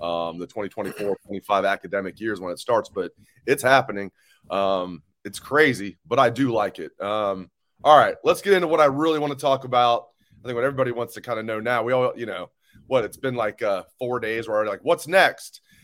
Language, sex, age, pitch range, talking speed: English, male, 30-49, 115-155 Hz, 210 wpm